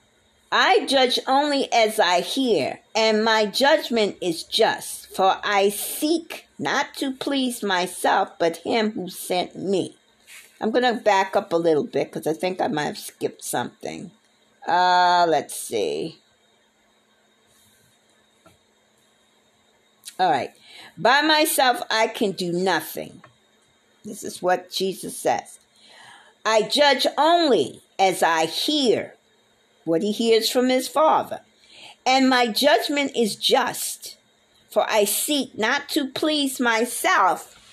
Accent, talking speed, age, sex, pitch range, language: American, 125 wpm, 50-69, female, 190-265 Hz, English